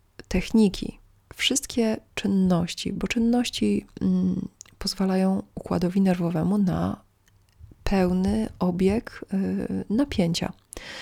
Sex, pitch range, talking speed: female, 170-200 Hz, 65 wpm